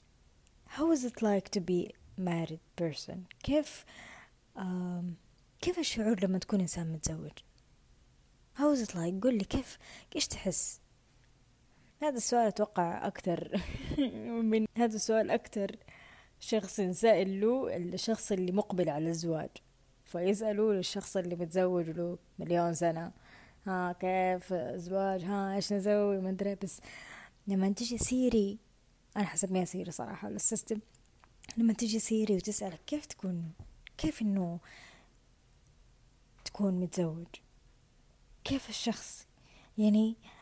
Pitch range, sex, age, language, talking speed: 175-220 Hz, female, 20-39, Arabic, 120 wpm